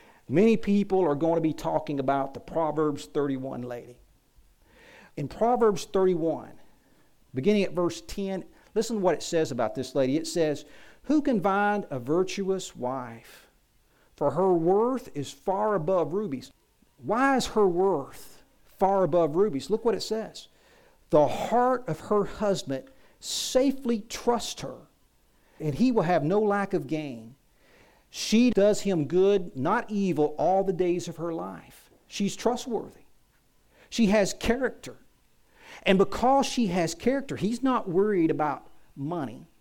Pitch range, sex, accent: 155-215 Hz, male, American